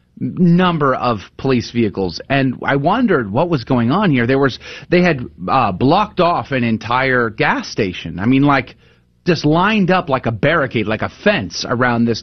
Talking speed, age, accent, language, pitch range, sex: 180 wpm, 30-49, American, English, 110-150 Hz, male